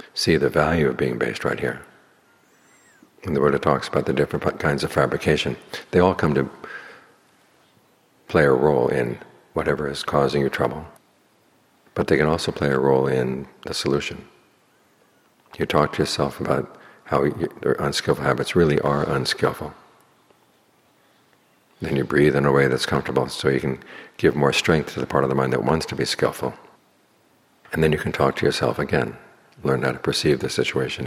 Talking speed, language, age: 180 wpm, English, 60-79